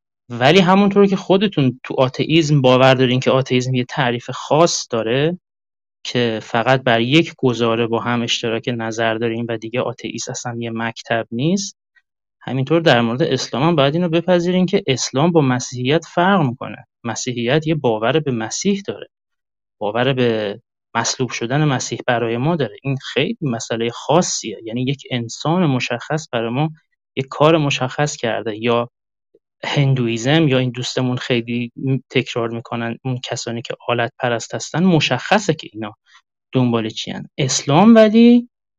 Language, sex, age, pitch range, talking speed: Persian, male, 30-49, 120-170 Hz, 145 wpm